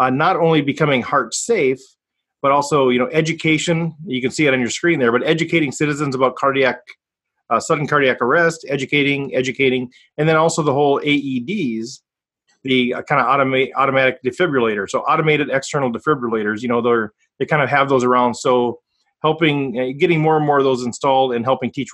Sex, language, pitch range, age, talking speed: male, English, 130-160 Hz, 30-49, 185 wpm